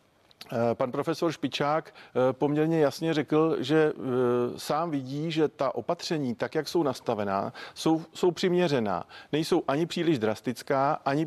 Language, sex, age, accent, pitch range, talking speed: Czech, male, 50-69, native, 120-150 Hz, 130 wpm